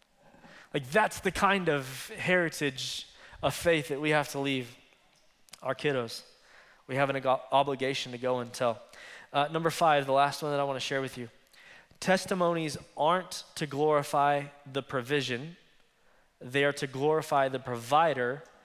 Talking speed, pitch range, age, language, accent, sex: 150 wpm, 140-170 Hz, 20-39, English, American, male